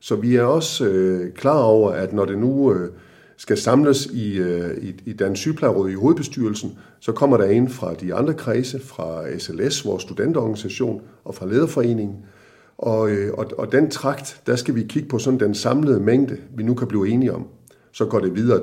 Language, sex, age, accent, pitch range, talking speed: Danish, male, 50-69, native, 100-130 Hz, 200 wpm